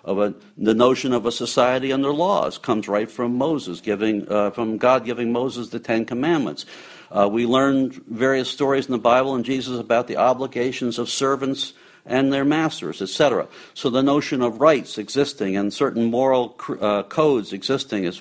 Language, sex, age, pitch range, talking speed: English, male, 60-79, 105-130 Hz, 175 wpm